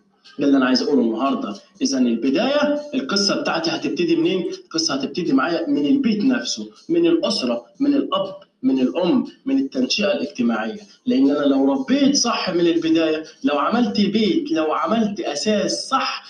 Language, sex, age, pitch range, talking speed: Arabic, male, 20-39, 175-285 Hz, 145 wpm